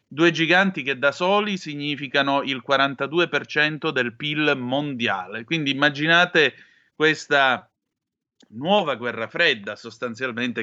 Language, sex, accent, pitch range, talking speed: Italian, male, native, 125-165 Hz, 100 wpm